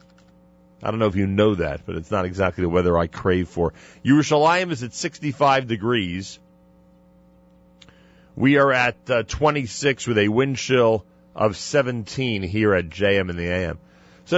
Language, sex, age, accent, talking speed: English, male, 40-59, American, 165 wpm